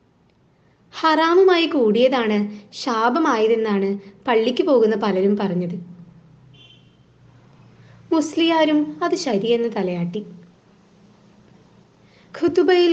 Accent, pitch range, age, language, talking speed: native, 200-285 Hz, 20-39, Malayalam, 50 wpm